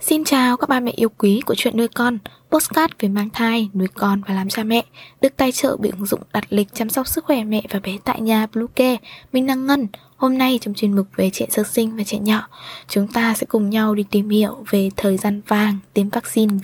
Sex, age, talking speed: female, 10-29, 245 wpm